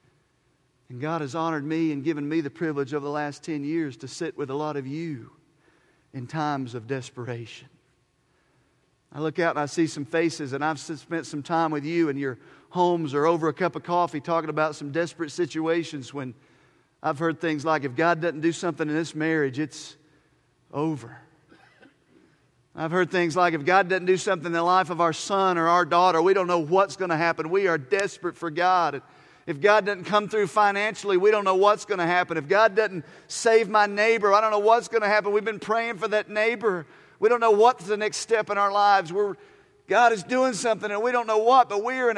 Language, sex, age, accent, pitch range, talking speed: English, male, 40-59, American, 155-205 Hz, 220 wpm